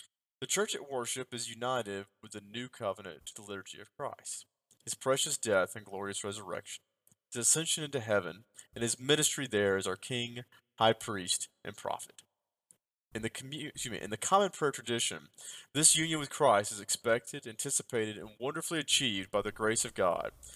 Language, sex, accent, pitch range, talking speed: English, male, American, 105-140 Hz, 180 wpm